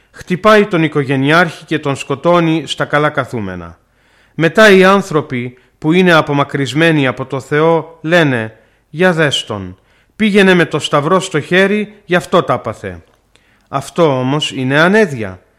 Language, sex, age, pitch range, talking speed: Greek, male, 40-59, 135-180 Hz, 140 wpm